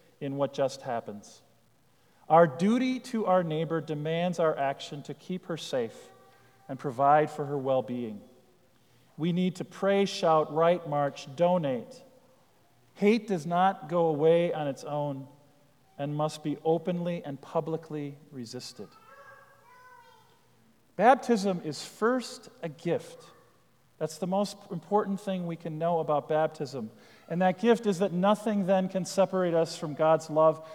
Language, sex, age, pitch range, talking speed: English, male, 40-59, 145-195 Hz, 140 wpm